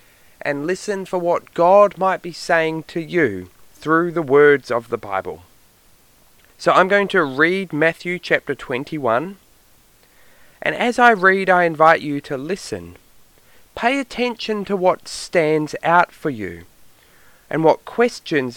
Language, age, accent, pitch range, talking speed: English, 20-39, Australian, 130-190 Hz, 140 wpm